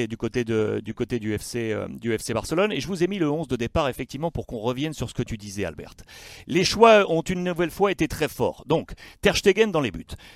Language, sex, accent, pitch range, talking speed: French, male, French, 120-190 Hz, 260 wpm